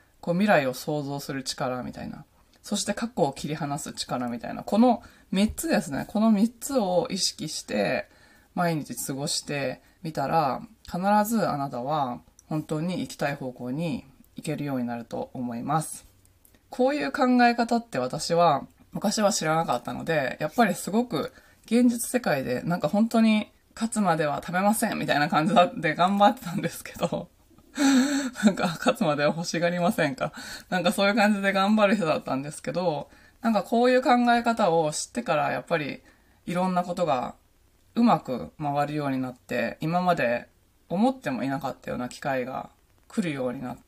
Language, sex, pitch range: Japanese, female, 145-225 Hz